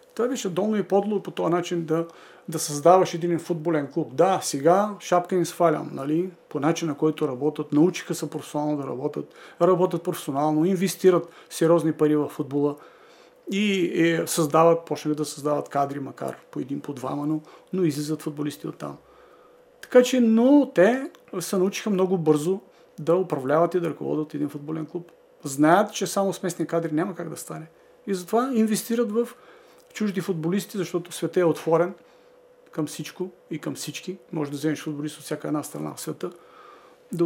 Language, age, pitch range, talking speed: Bulgarian, 40-59, 155-185 Hz, 170 wpm